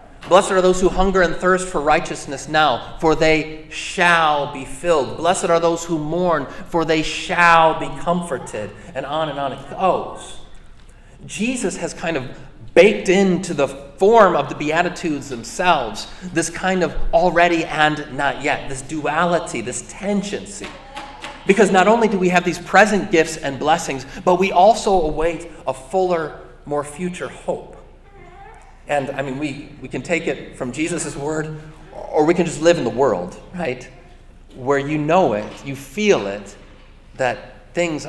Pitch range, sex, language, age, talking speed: 140-175 Hz, male, English, 30-49, 160 wpm